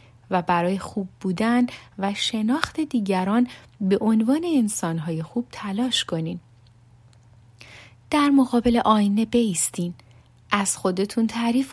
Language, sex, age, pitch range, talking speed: Persian, female, 30-49, 175-245 Hz, 100 wpm